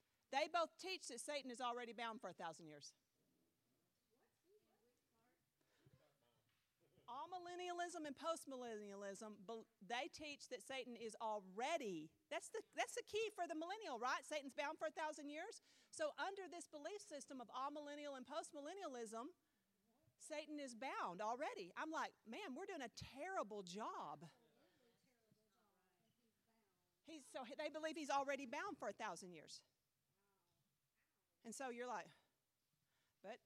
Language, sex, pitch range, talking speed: English, female, 240-330 Hz, 135 wpm